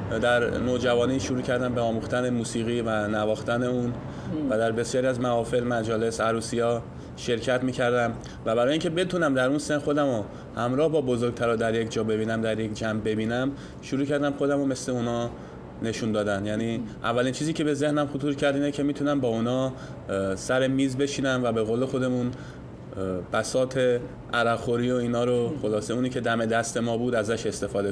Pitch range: 115-140 Hz